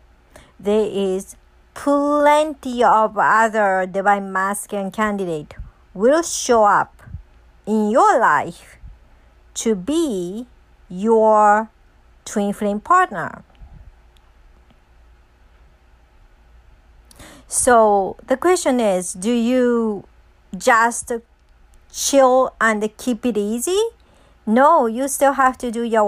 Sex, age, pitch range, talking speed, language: male, 50-69, 195-250 Hz, 90 wpm, English